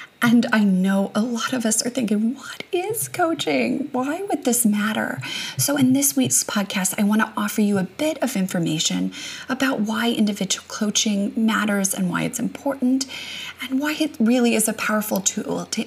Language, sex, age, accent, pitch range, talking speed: English, female, 30-49, American, 185-250 Hz, 180 wpm